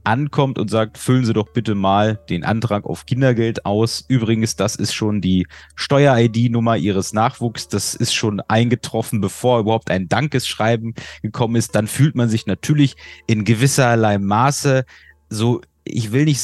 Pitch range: 110-140 Hz